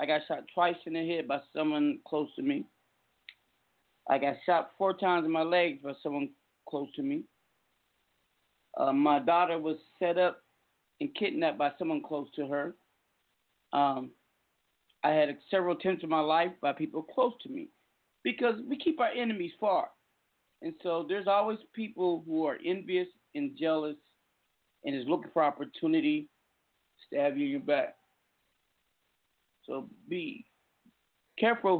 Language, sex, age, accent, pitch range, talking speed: English, male, 40-59, American, 155-250 Hz, 155 wpm